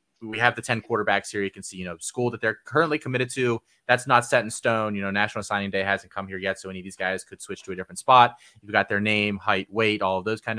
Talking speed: 295 wpm